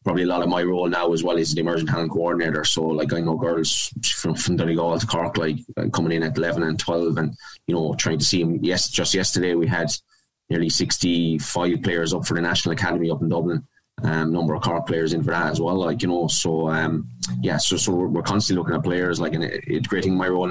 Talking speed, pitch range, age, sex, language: 245 wpm, 80-85 Hz, 20-39, male, English